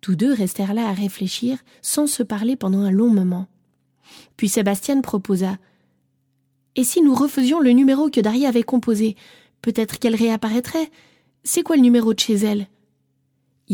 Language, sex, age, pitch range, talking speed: French, female, 20-39, 185-260 Hz, 165 wpm